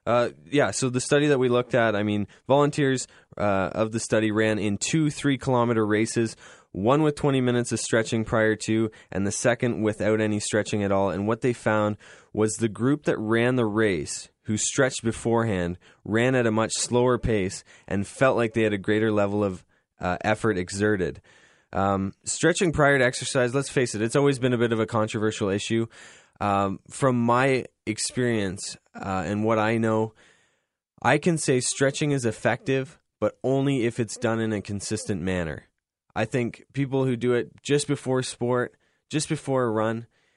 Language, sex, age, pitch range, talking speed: English, male, 20-39, 105-130 Hz, 185 wpm